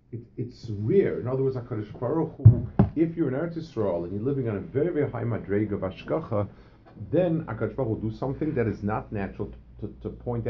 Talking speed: 210 wpm